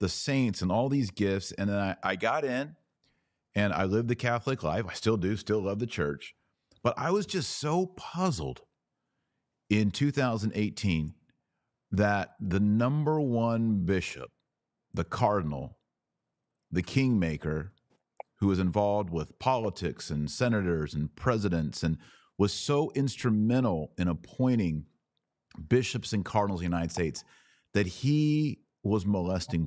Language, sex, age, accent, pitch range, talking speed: English, male, 40-59, American, 90-125 Hz, 140 wpm